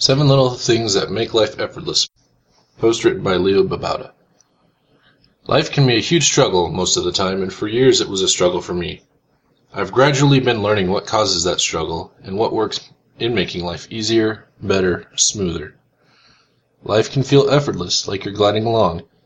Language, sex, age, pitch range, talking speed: English, male, 20-39, 95-135 Hz, 175 wpm